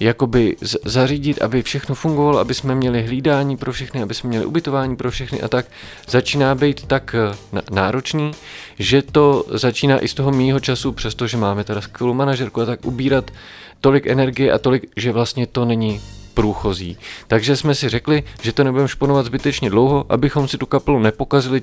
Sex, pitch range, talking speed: male, 115-135 Hz, 175 wpm